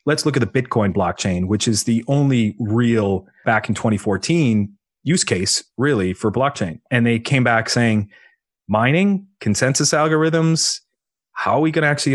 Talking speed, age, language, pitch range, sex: 170 wpm, 30-49, English, 105-125 Hz, male